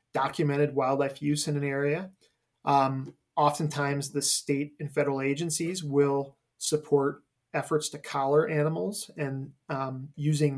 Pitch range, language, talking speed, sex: 140-150 Hz, English, 125 wpm, male